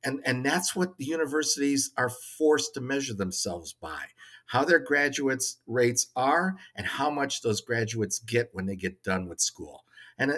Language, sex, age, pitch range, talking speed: English, male, 50-69, 105-135 Hz, 175 wpm